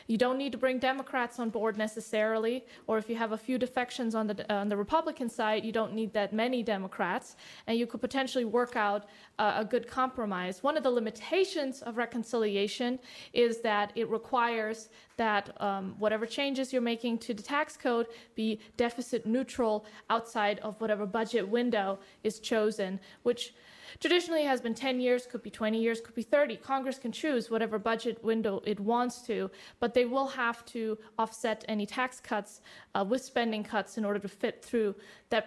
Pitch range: 215-250 Hz